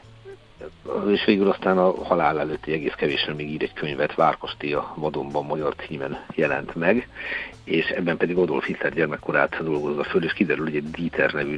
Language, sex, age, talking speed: Hungarian, male, 60-79, 165 wpm